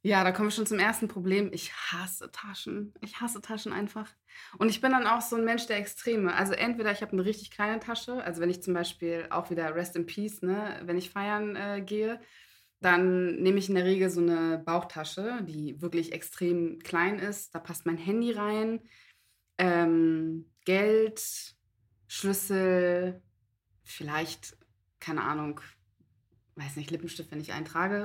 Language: German